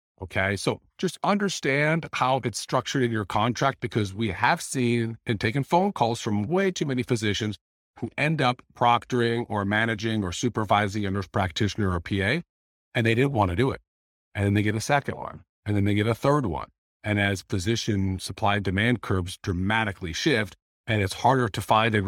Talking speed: 195 wpm